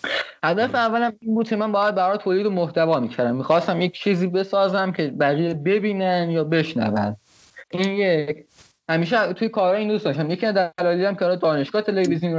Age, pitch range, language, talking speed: 20-39, 150-200 Hz, Persian, 175 wpm